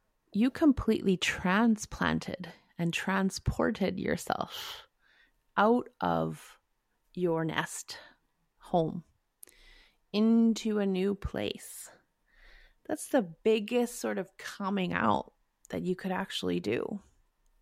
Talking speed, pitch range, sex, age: 90 wpm, 180-225 Hz, female, 30-49